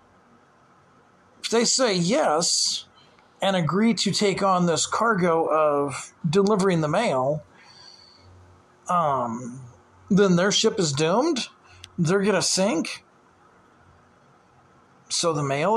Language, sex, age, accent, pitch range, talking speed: English, male, 40-59, American, 135-205 Hz, 100 wpm